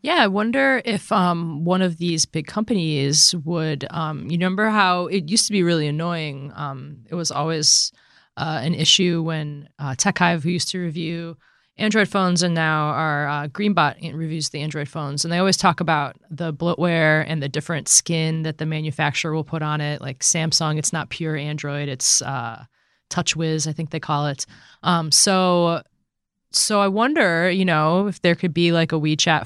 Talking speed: 185 wpm